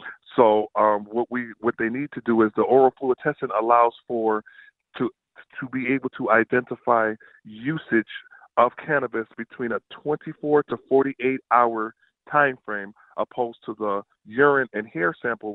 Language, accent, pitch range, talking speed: English, American, 120-145 Hz, 150 wpm